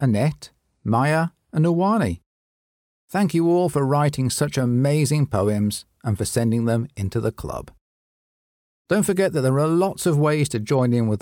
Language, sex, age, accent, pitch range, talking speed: English, male, 50-69, British, 105-160 Hz, 165 wpm